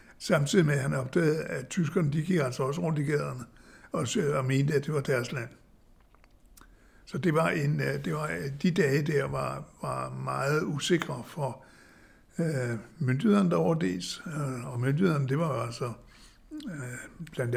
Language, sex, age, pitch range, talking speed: Danish, male, 60-79, 130-165 Hz, 165 wpm